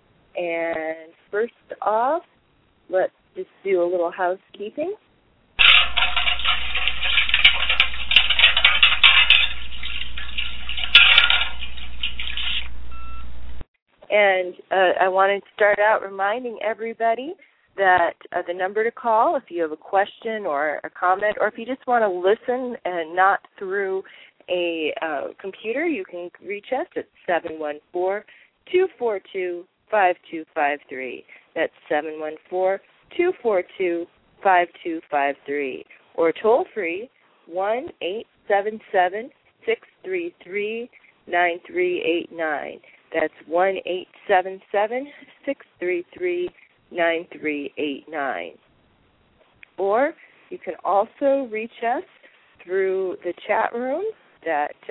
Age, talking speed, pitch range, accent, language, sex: 30-49, 110 wpm, 170-235 Hz, American, English, female